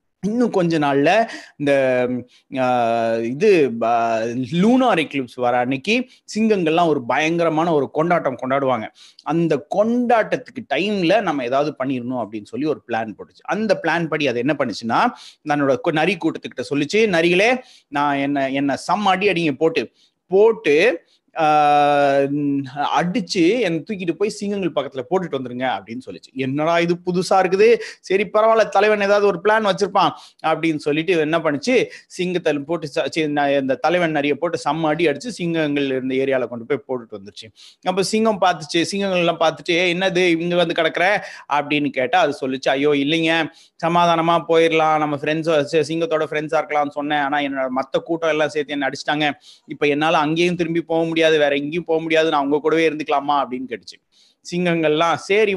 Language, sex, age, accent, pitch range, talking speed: Tamil, male, 30-49, native, 145-185 Hz, 135 wpm